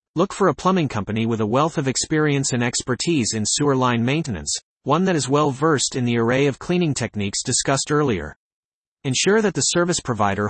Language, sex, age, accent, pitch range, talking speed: English, male, 40-59, American, 120-155 Hz, 195 wpm